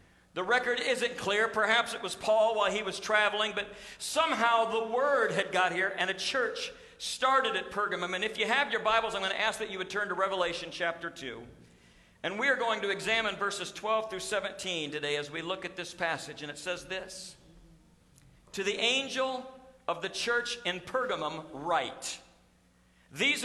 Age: 50-69